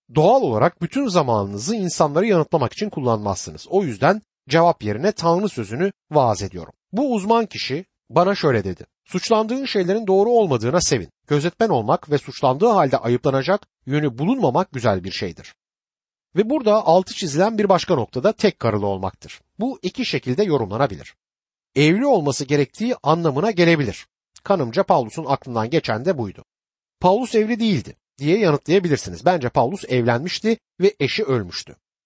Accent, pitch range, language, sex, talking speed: native, 125-200 Hz, Turkish, male, 140 wpm